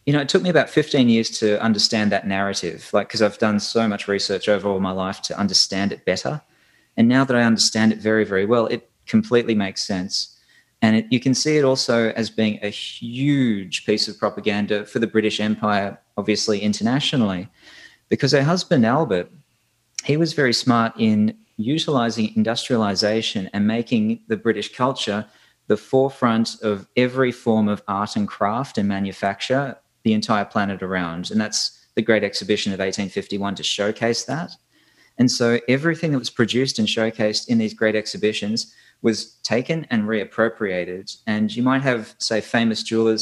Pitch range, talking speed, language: 105-120 Hz, 175 wpm, English